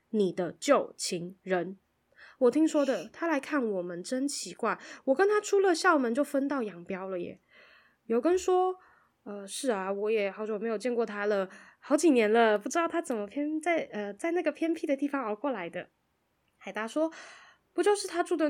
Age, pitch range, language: 20-39, 205-295 Hz, Chinese